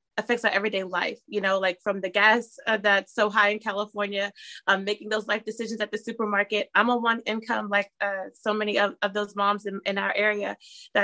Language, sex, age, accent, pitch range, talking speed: English, female, 20-39, American, 205-240 Hz, 225 wpm